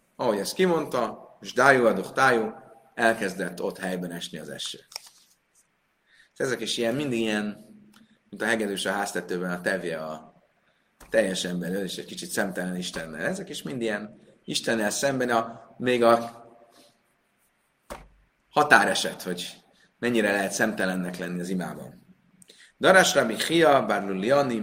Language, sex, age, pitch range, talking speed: Hungarian, male, 30-49, 95-140 Hz, 125 wpm